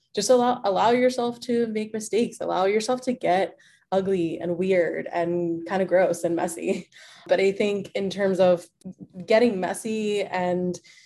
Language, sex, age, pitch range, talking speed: English, female, 20-39, 175-220 Hz, 155 wpm